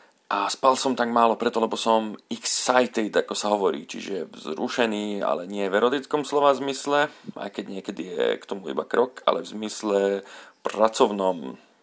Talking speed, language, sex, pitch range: 165 wpm, Slovak, male, 105-125 Hz